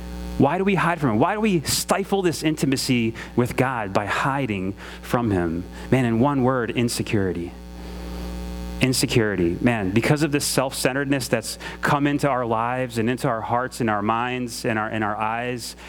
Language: English